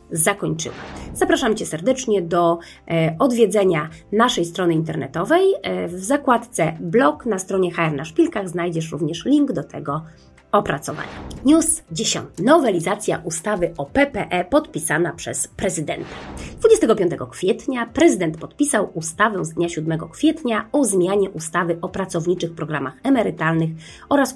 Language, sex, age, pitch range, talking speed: Polish, female, 30-49, 165-235 Hz, 120 wpm